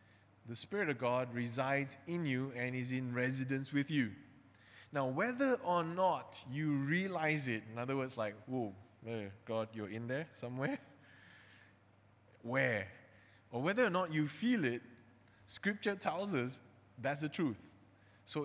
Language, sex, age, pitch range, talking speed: English, male, 20-39, 115-150 Hz, 145 wpm